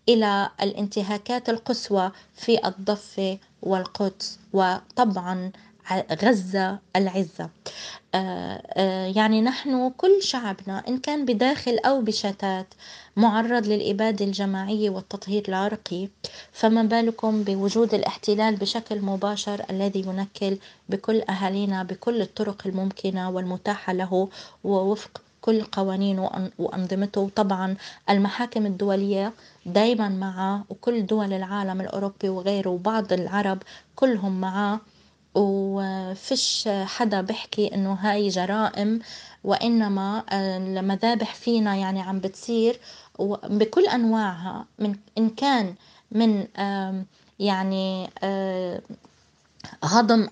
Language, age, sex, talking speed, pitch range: Arabic, 20-39, female, 90 wpm, 190-220 Hz